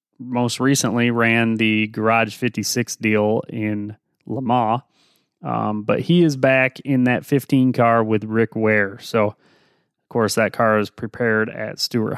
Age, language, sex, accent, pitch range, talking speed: 30-49, English, male, American, 110-135 Hz, 155 wpm